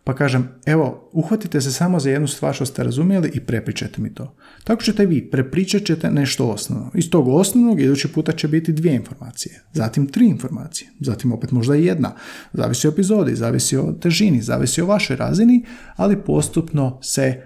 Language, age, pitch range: Croatian, 40-59, 120-155 Hz